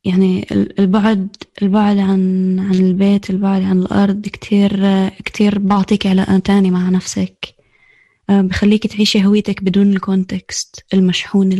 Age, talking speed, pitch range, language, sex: 20-39, 115 wpm, 185-200 Hz, Arabic, female